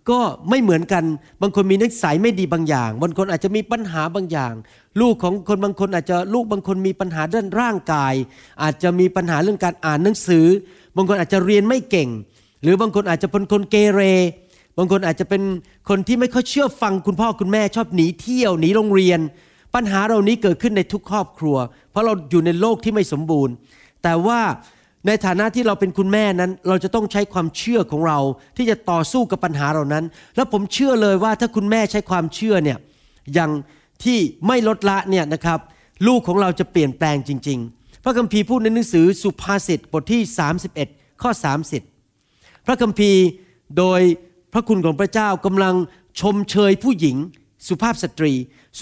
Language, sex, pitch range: Thai, male, 165-215 Hz